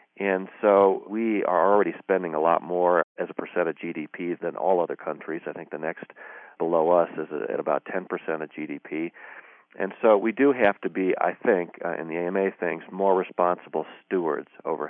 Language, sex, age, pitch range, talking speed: English, male, 40-59, 80-95 Hz, 195 wpm